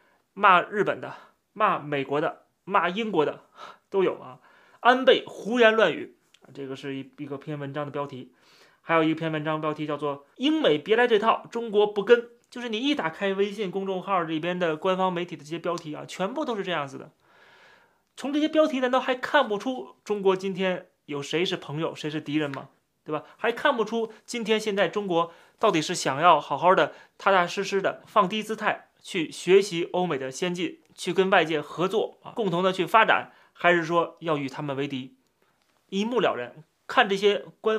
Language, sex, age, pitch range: Chinese, male, 30-49, 155-220 Hz